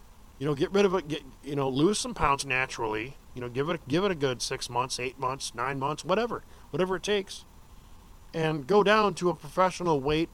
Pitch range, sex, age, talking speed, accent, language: 115-170 Hz, male, 50-69, 225 wpm, American, English